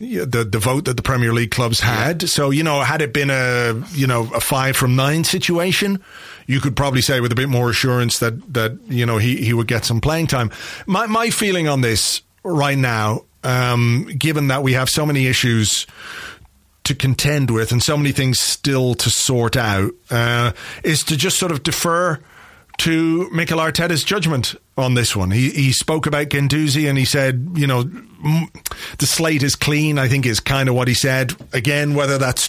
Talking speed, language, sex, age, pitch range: 200 wpm, English, male, 40-59, 125-155 Hz